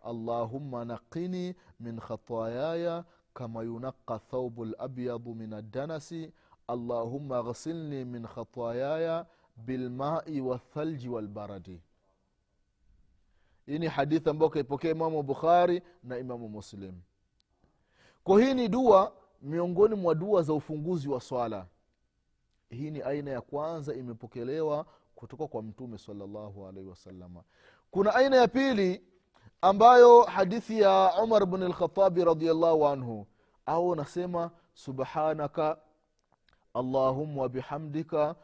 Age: 30-49